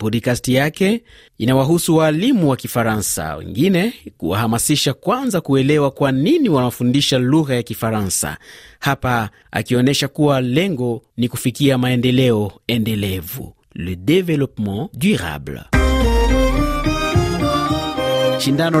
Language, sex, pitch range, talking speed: Swahili, male, 120-160 Hz, 90 wpm